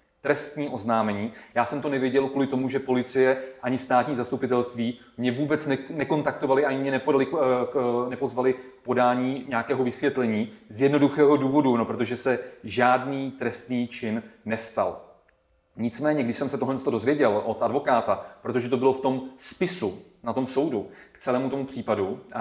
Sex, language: male, Czech